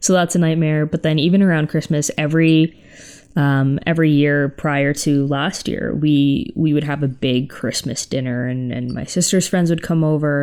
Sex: female